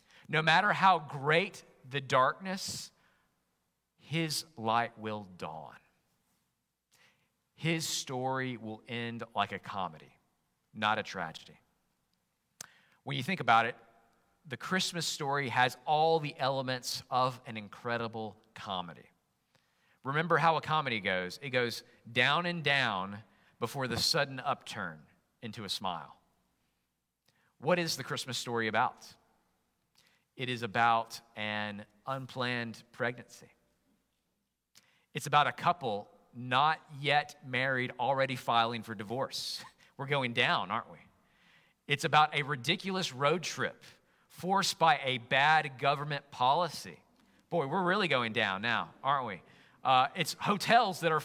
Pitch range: 115-160 Hz